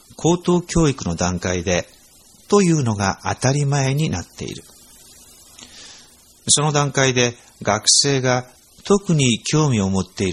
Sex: male